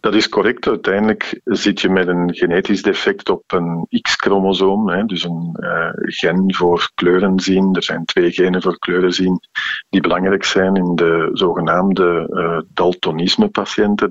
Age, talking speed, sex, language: 50-69, 130 wpm, male, Dutch